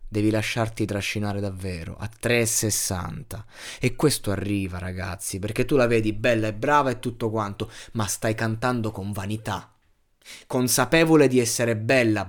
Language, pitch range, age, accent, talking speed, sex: Italian, 105-125 Hz, 20-39, native, 140 wpm, male